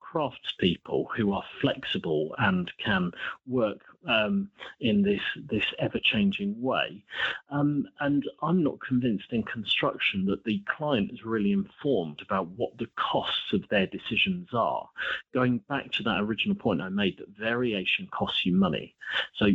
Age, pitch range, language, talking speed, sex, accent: 40-59, 105-170 Hz, English, 145 wpm, male, British